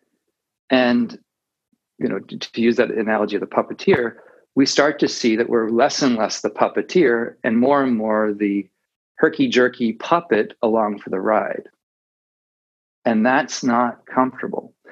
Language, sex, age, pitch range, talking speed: English, male, 40-59, 115-140 Hz, 150 wpm